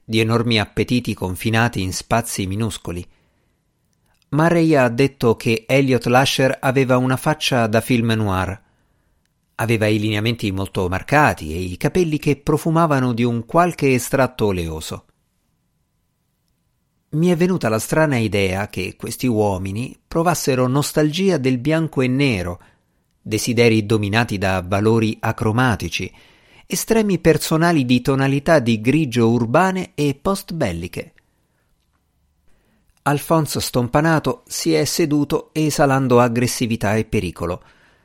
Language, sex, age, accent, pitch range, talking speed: Italian, male, 50-69, native, 105-150 Hz, 115 wpm